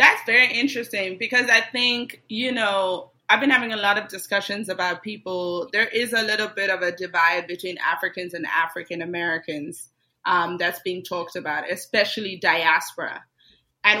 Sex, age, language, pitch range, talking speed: female, 30-49, English, 200-270 Hz, 155 wpm